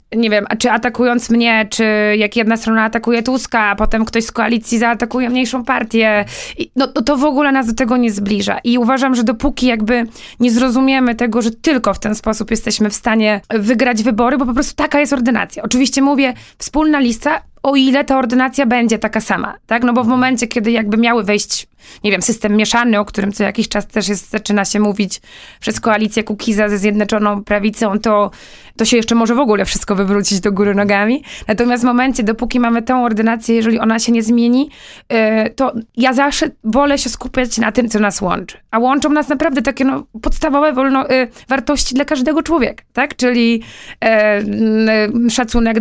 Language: Polish